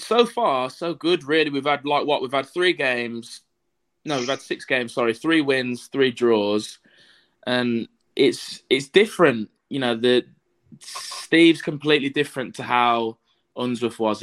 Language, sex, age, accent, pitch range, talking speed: English, male, 20-39, British, 105-130 Hz, 155 wpm